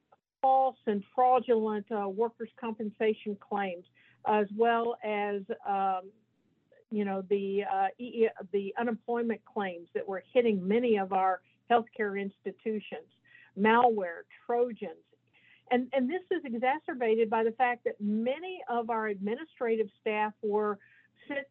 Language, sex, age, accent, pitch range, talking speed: English, female, 50-69, American, 210-250 Hz, 125 wpm